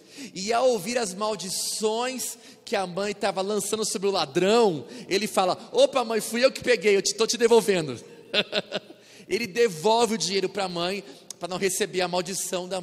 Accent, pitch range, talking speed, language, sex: Brazilian, 190-240 Hz, 180 wpm, Portuguese, male